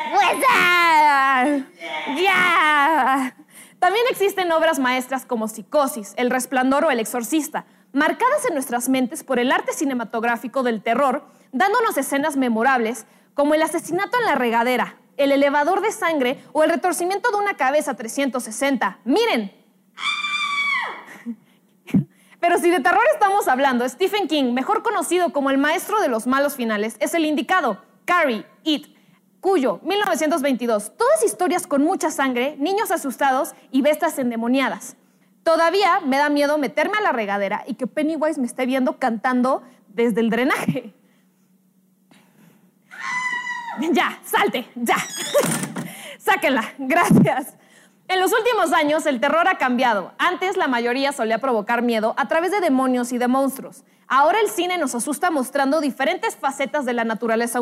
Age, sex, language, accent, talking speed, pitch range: 20-39, female, Spanish, Mexican, 135 wpm, 245-340 Hz